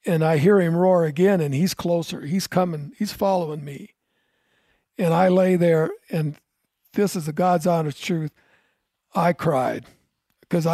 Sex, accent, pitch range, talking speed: male, American, 165-205 Hz, 155 wpm